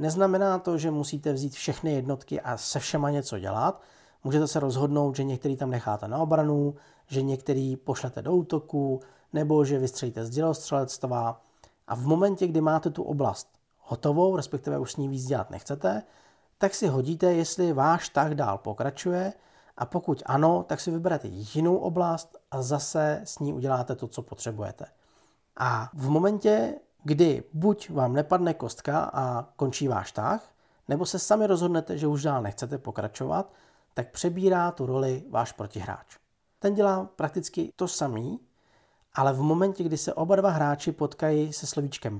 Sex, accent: male, native